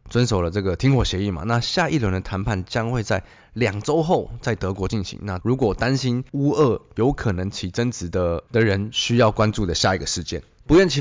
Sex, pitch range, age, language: male, 95-130 Hz, 20-39, Chinese